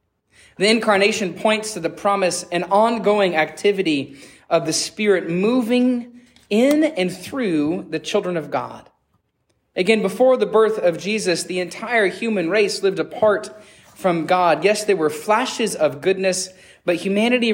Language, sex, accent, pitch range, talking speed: English, male, American, 165-220 Hz, 145 wpm